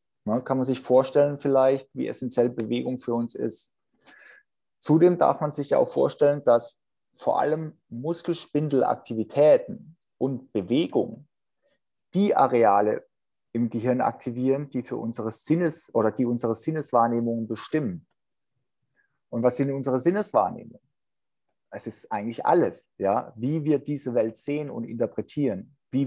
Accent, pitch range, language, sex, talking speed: German, 120-155 Hz, German, male, 125 wpm